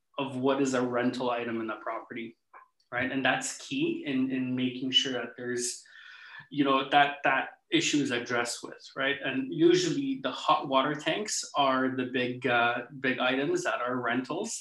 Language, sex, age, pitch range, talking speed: English, male, 20-39, 125-145 Hz, 175 wpm